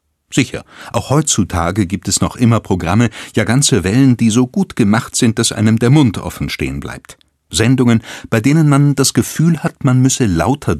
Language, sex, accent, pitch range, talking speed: German, male, German, 95-135 Hz, 185 wpm